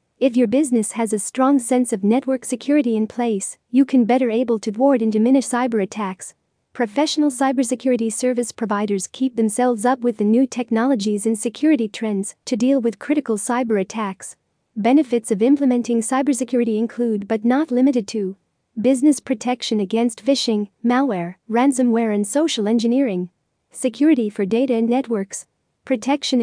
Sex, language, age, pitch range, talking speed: female, English, 40-59, 215-260 Hz, 150 wpm